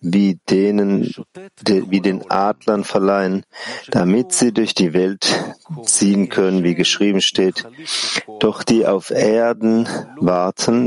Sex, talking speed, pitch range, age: male, 115 wpm, 95-115 Hz, 40-59